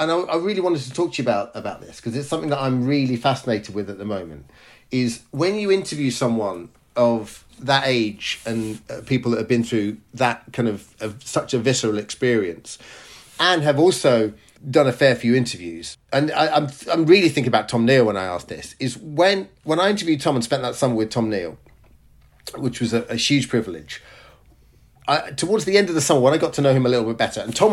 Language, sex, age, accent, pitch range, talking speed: English, male, 40-59, British, 115-145 Hz, 225 wpm